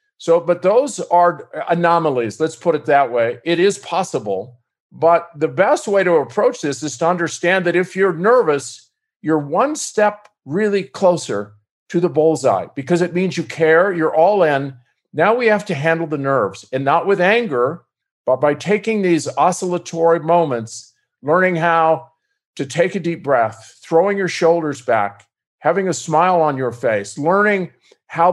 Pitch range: 150-190 Hz